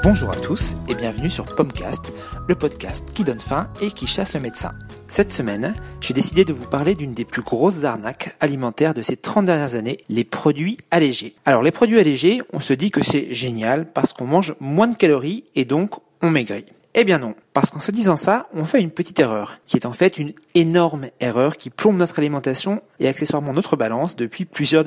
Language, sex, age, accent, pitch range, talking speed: French, male, 40-59, French, 135-180 Hz, 210 wpm